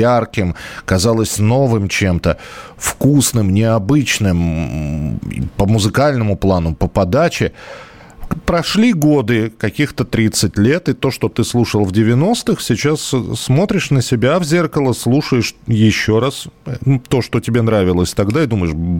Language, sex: Russian, male